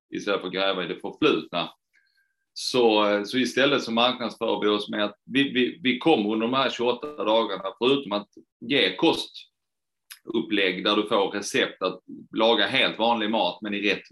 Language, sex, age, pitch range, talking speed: Swedish, male, 30-49, 100-115 Hz, 170 wpm